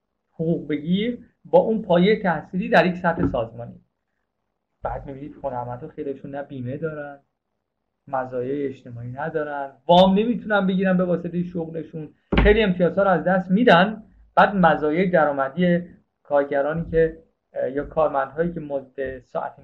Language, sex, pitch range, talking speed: Persian, male, 140-185 Hz, 130 wpm